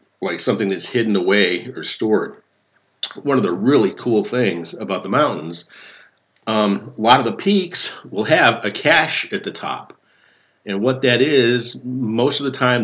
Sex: male